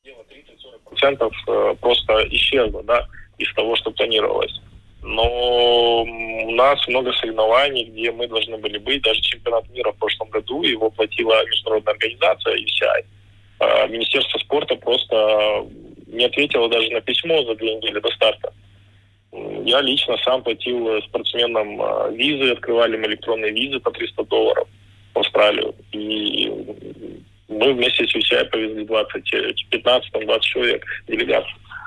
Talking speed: 130 wpm